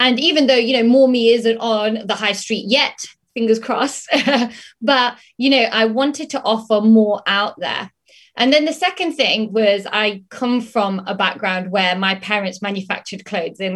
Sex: female